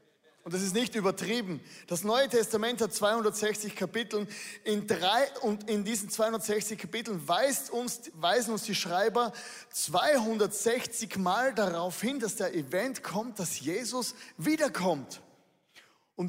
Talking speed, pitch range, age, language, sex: 135 wpm, 185-240 Hz, 20-39, German, male